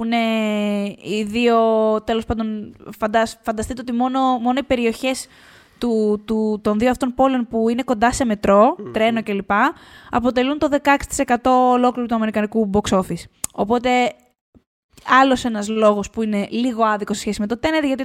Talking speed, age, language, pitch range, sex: 155 wpm, 20-39, Greek, 210-265 Hz, female